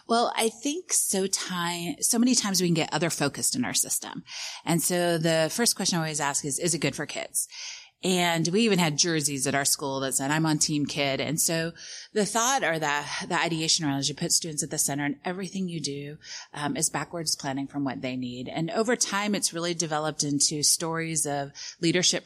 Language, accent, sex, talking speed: English, American, female, 220 wpm